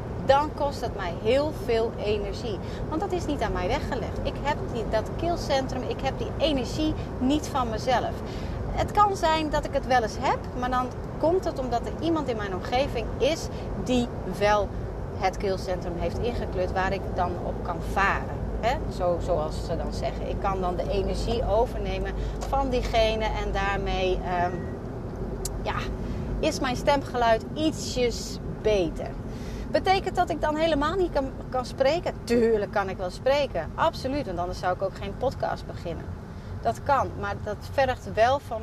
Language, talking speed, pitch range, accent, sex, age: Dutch, 165 wpm, 185-255 Hz, Dutch, female, 30-49